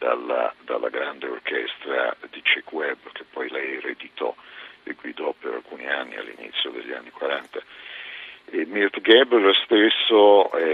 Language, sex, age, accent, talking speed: Italian, male, 50-69, native, 140 wpm